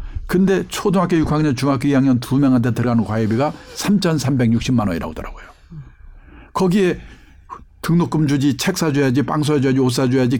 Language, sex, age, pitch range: Korean, male, 60-79, 115-170 Hz